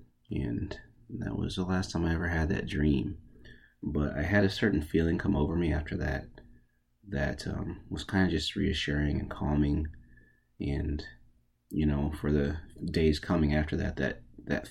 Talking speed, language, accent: 170 wpm, English, American